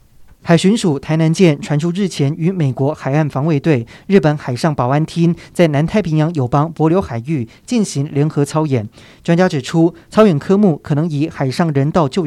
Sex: male